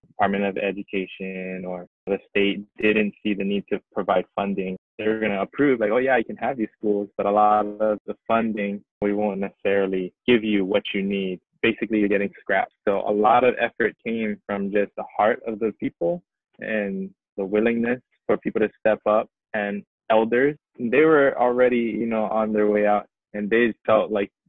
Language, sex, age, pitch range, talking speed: English, male, 20-39, 100-110 Hz, 195 wpm